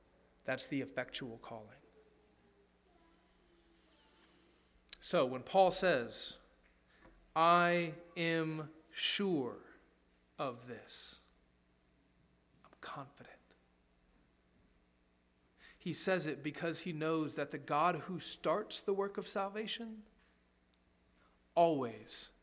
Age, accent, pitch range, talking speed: 40-59, American, 135-190 Hz, 85 wpm